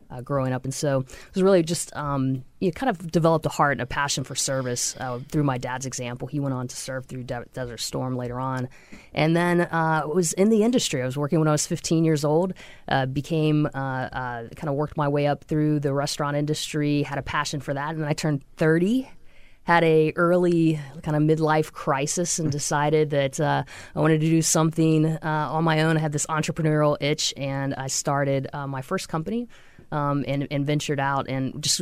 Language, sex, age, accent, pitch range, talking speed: English, female, 20-39, American, 135-160 Hz, 225 wpm